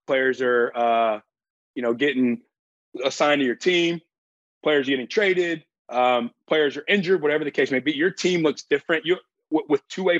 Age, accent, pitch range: 20-39, American, 135-170 Hz